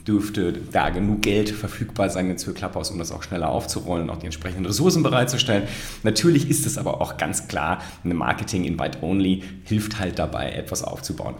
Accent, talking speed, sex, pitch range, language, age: German, 180 wpm, male, 105-130 Hz, German, 30-49